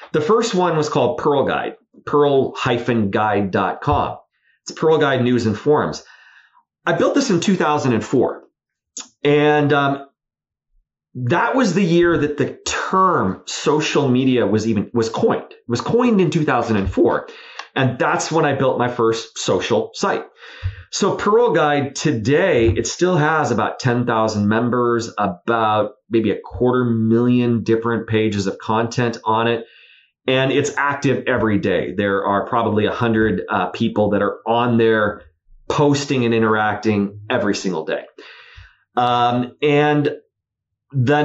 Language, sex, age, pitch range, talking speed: English, male, 30-49, 110-145 Hz, 135 wpm